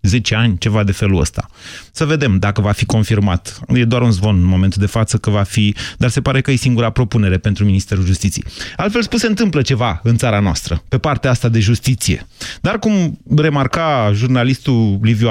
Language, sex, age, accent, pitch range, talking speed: Romanian, male, 30-49, native, 105-150 Hz, 200 wpm